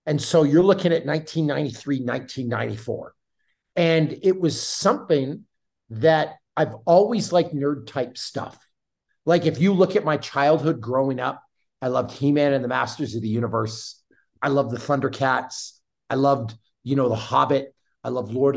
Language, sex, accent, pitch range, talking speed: English, male, American, 125-155 Hz, 160 wpm